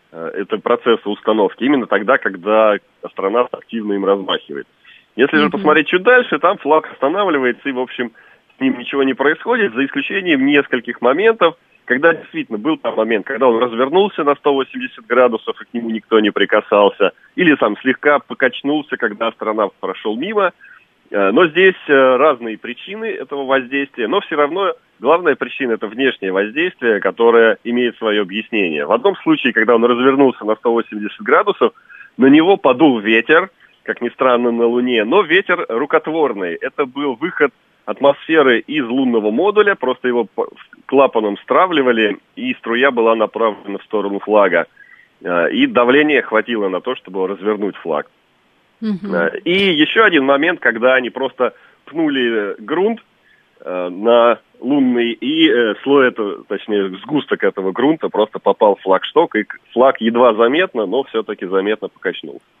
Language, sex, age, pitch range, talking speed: Russian, male, 30-49, 110-160 Hz, 145 wpm